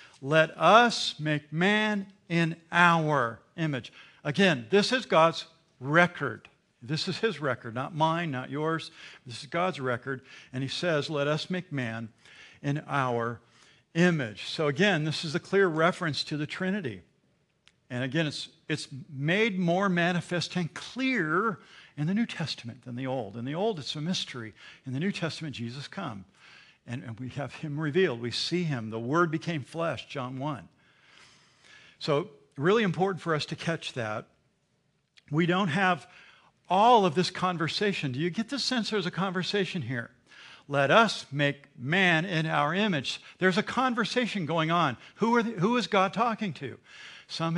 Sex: male